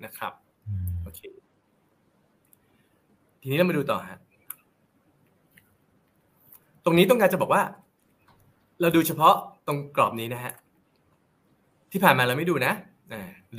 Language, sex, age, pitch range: Thai, male, 20-39, 130-190 Hz